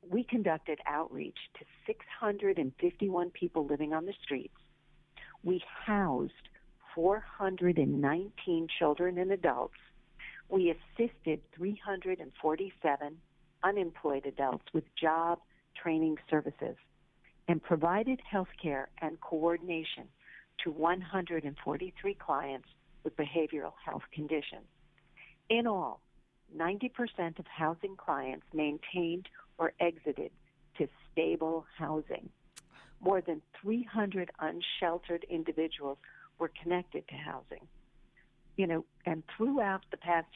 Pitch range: 155-185 Hz